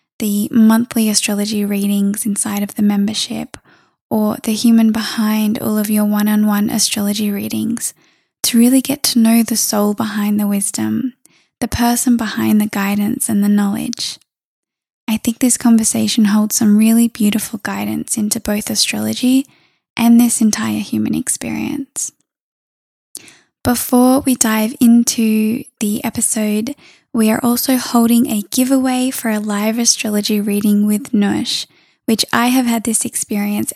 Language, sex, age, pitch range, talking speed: English, female, 10-29, 210-235 Hz, 140 wpm